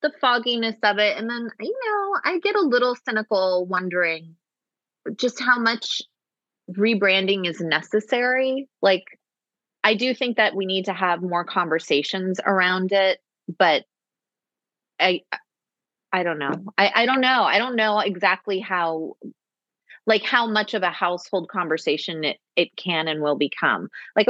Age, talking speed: 30-49, 150 wpm